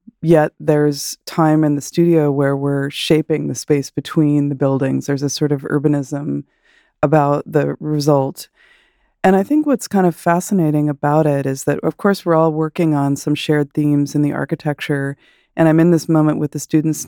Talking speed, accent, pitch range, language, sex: 185 wpm, American, 145-165 Hz, English, female